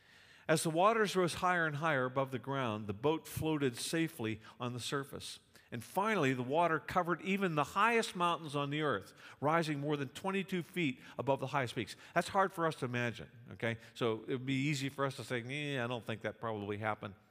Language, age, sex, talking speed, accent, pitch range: English, 50-69, male, 210 wpm, American, 115-150 Hz